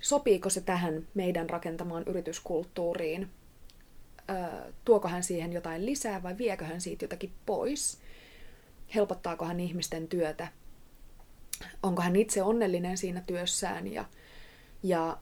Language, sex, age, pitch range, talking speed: Finnish, female, 30-49, 170-210 Hz, 115 wpm